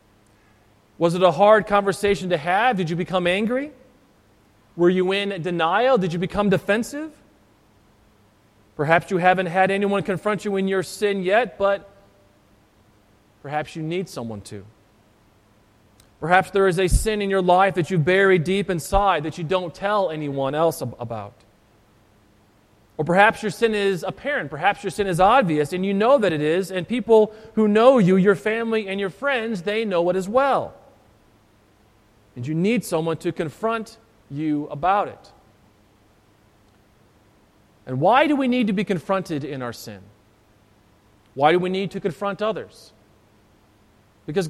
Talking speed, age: 155 wpm, 30-49